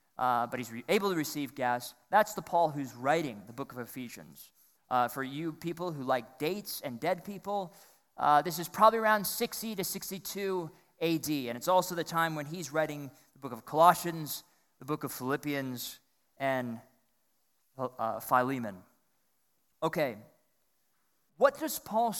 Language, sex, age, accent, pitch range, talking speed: English, male, 20-39, American, 140-205 Hz, 155 wpm